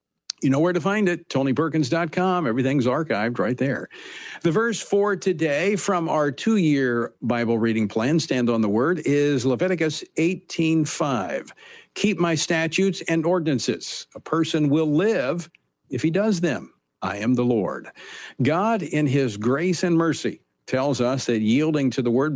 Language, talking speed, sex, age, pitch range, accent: English, 155 wpm, male, 50-69, 125-170 Hz, American